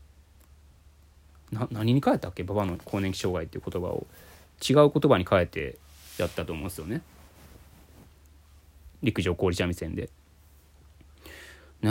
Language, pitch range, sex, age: Japanese, 75-100 Hz, male, 20-39